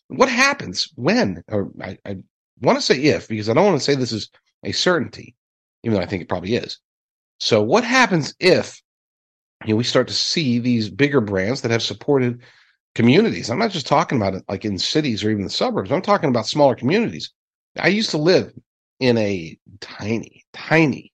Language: English